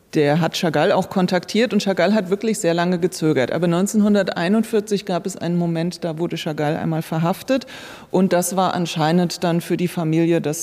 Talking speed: 180 wpm